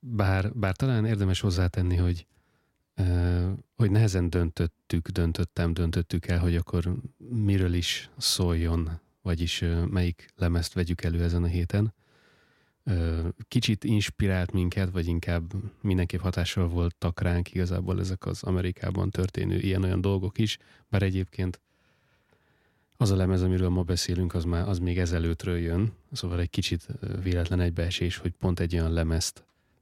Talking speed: 135 wpm